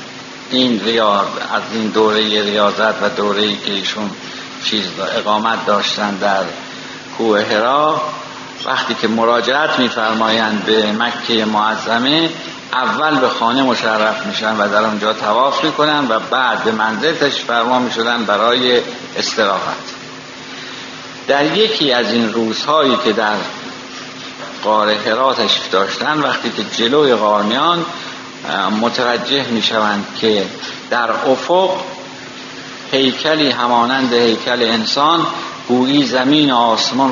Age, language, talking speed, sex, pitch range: 60-79, Persian, 110 wpm, male, 110-135 Hz